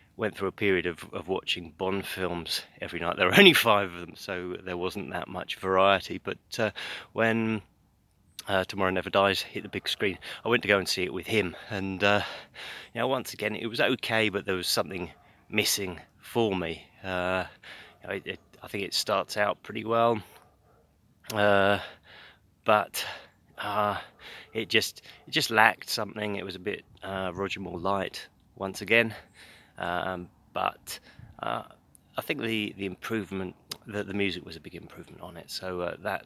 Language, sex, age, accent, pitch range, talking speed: English, male, 30-49, British, 90-105 Hz, 170 wpm